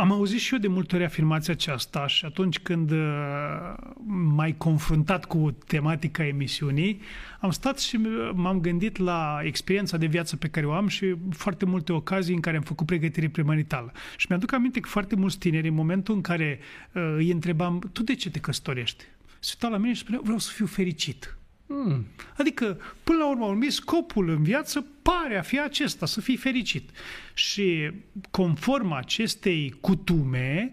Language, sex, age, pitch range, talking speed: Romanian, male, 30-49, 160-230 Hz, 170 wpm